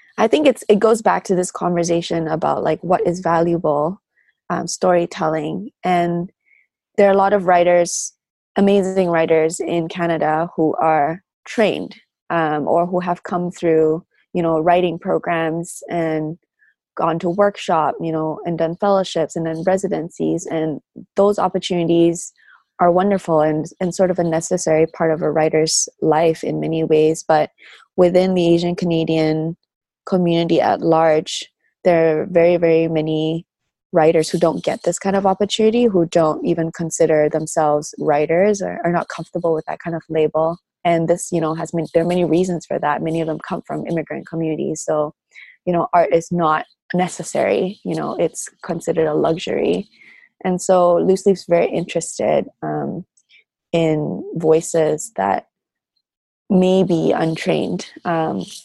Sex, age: female, 20-39